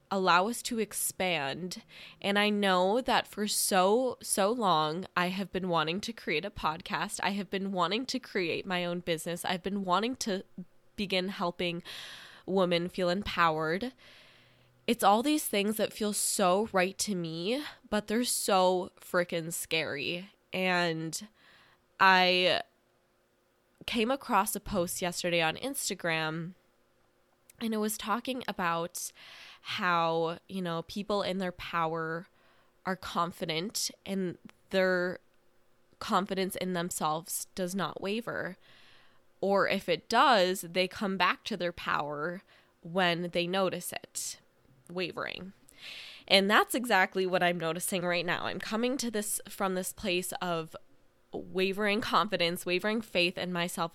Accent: American